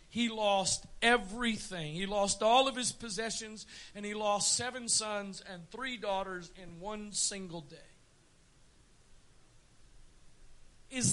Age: 50-69